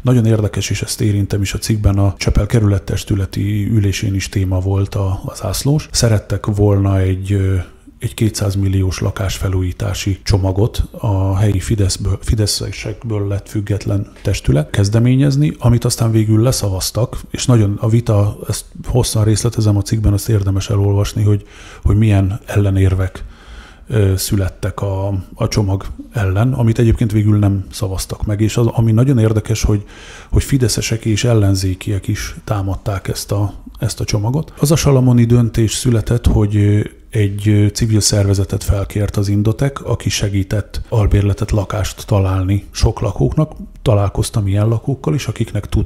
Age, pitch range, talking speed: 30-49, 100-115 Hz, 135 wpm